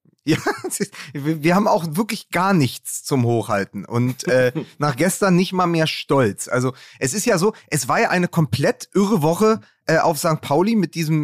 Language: German